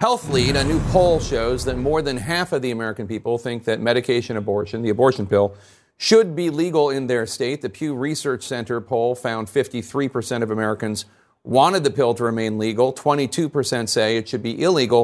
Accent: American